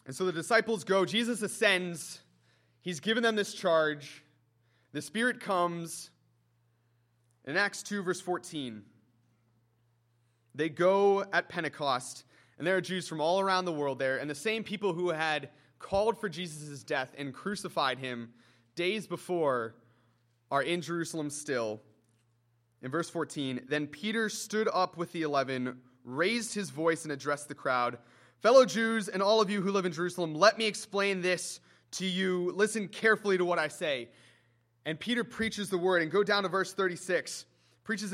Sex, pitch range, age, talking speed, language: male, 135-205 Hz, 30-49, 165 wpm, English